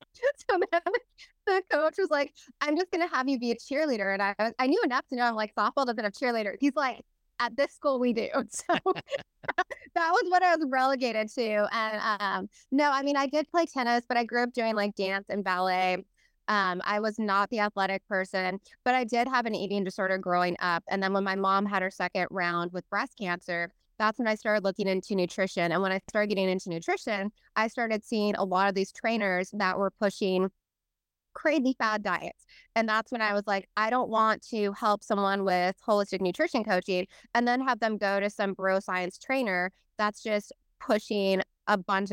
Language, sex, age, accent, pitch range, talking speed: English, female, 20-39, American, 190-240 Hz, 210 wpm